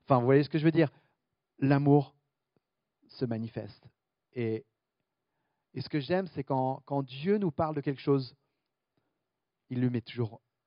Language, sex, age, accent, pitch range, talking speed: French, male, 40-59, French, 125-165 Hz, 165 wpm